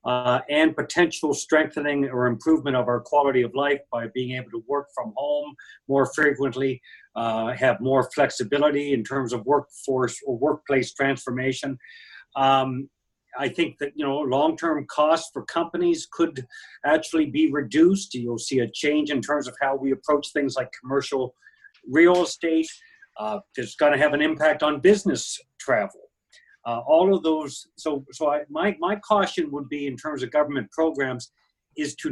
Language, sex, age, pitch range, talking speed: English, male, 60-79, 135-180 Hz, 165 wpm